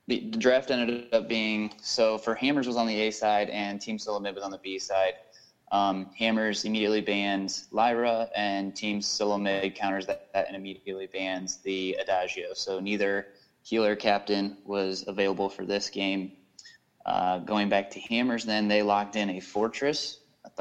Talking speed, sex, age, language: 170 wpm, male, 20-39, English